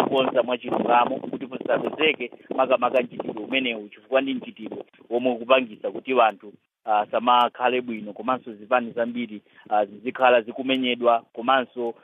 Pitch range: 115-130 Hz